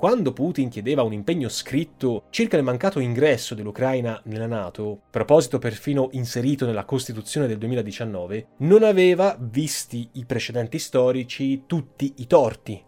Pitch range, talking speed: 110-145 Hz, 135 wpm